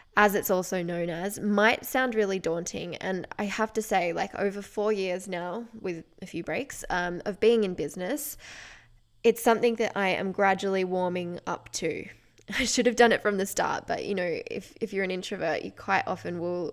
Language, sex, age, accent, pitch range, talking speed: English, female, 10-29, Australian, 180-220 Hz, 205 wpm